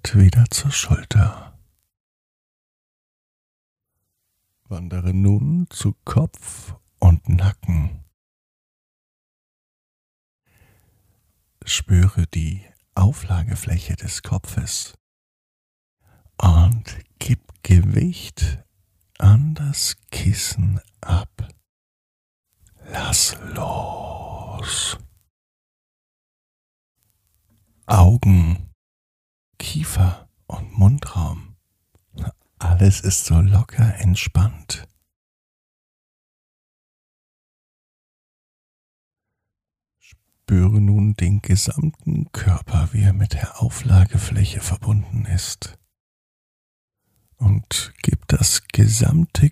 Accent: German